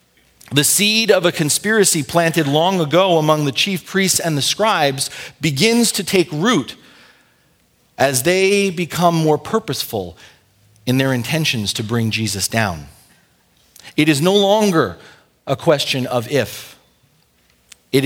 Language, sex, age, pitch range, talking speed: English, male, 40-59, 110-165 Hz, 135 wpm